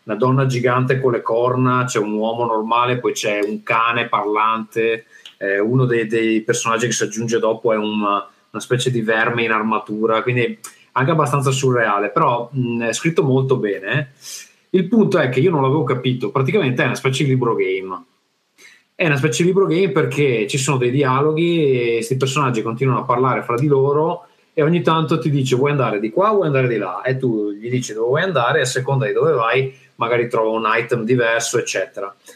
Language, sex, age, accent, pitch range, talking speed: Italian, male, 30-49, native, 115-150 Hz, 200 wpm